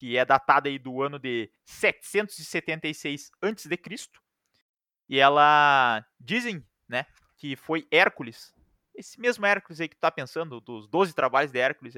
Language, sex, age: Portuguese, male, 20-39